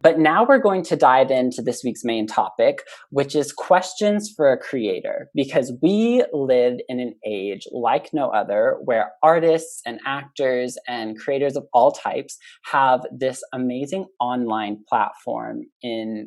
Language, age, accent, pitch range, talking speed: English, 20-39, American, 120-175 Hz, 150 wpm